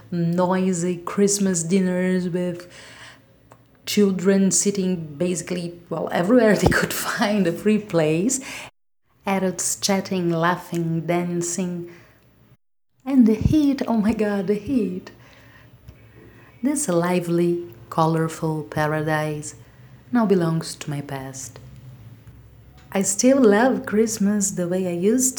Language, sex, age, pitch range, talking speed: English, female, 30-49, 165-210 Hz, 105 wpm